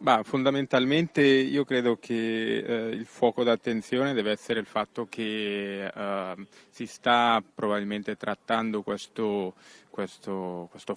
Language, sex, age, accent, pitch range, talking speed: Italian, male, 20-39, native, 105-120 Hz, 120 wpm